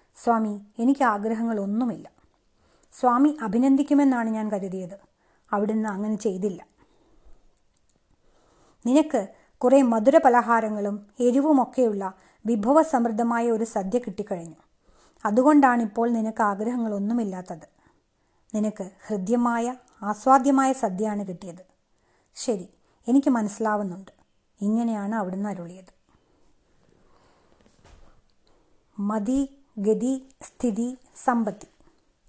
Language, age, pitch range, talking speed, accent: Malayalam, 30-49, 210-260 Hz, 65 wpm, native